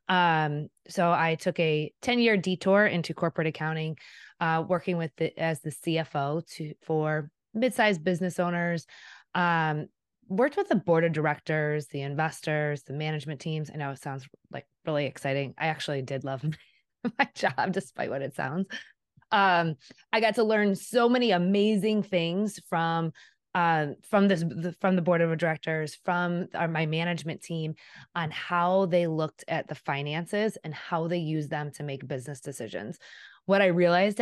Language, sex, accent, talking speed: English, female, American, 165 wpm